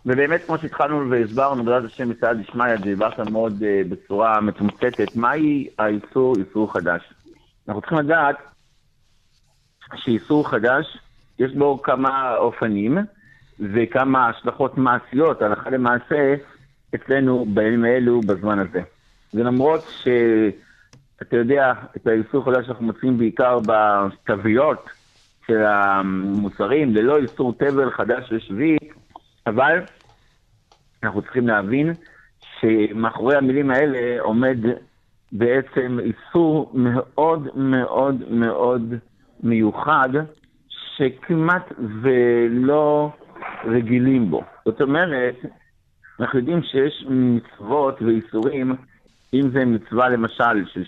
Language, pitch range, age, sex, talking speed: Hebrew, 110-135 Hz, 60-79, male, 100 wpm